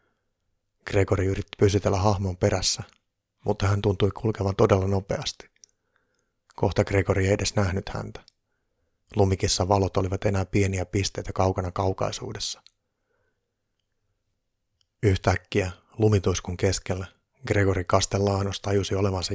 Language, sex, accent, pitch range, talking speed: Finnish, male, native, 95-115 Hz, 100 wpm